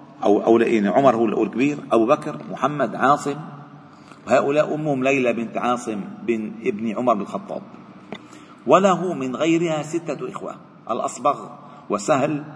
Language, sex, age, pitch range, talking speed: Arabic, male, 50-69, 125-175 Hz, 130 wpm